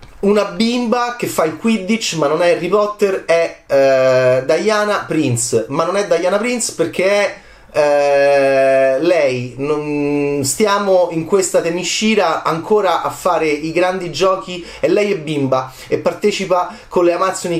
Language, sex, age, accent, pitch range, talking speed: Italian, male, 30-49, native, 130-205 Hz, 150 wpm